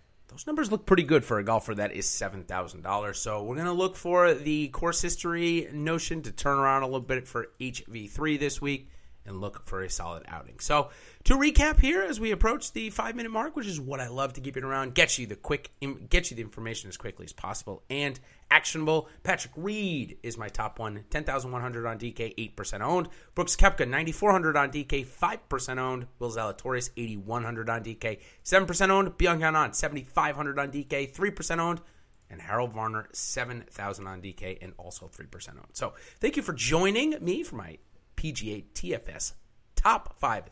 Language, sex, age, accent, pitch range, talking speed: English, male, 30-49, American, 110-175 Hz, 185 wpm